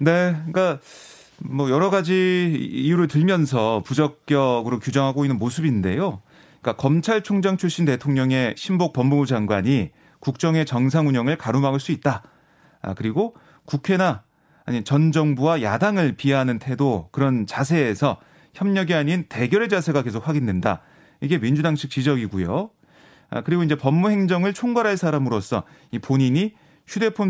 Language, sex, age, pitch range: Korean, male, 30-49, 130-175 Hz